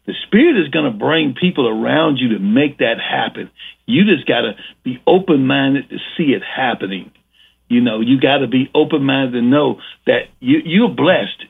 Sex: male